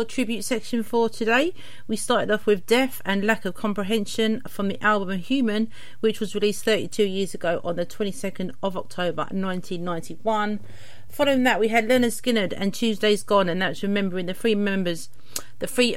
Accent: British